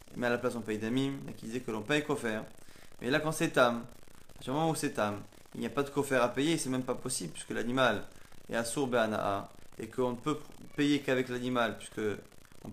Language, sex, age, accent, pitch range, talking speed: French, male, 20-39, French, 125-155 Hz, 240 wpm